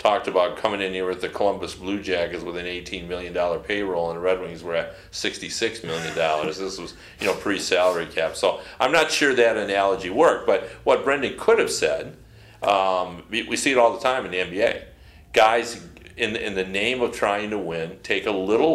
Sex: male